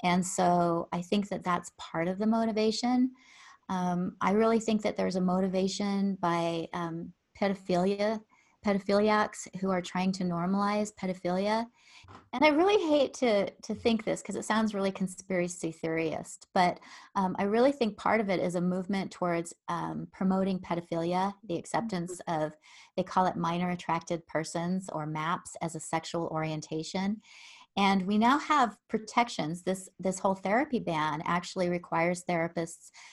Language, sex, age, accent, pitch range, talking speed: English, female, 30-49, American, 170-205 Hz, 155 wpm